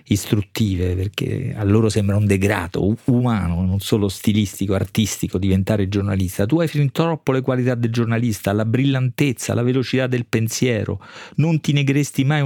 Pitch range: 100-125 Hz